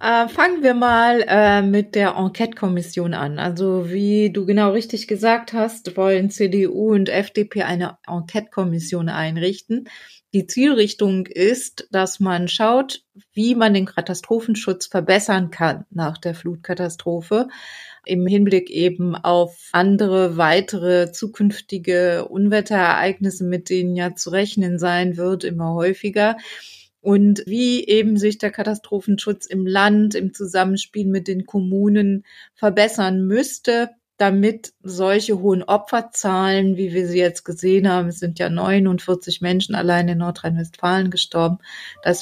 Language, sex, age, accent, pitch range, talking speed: German, female, 30-49, German, 180-210 Hz, 130 wpm